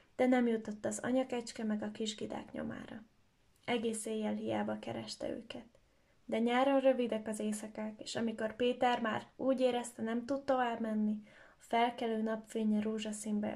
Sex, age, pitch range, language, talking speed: female, 10-29, 215-255 Hz, Hungarian, 140 wpm